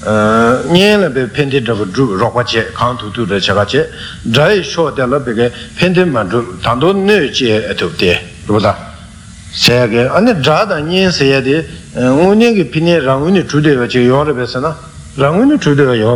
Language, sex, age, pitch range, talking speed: Italian, male, 60-79, 115-165 Hz, 140 wpm